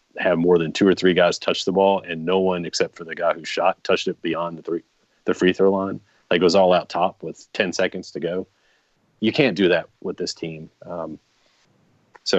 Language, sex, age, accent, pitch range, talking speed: English, male, 30-49, American, 85-105 Hz, 230 wpm